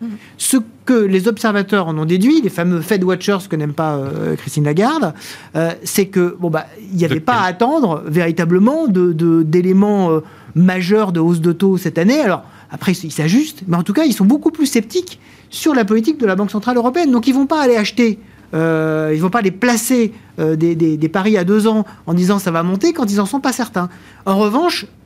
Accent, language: French, French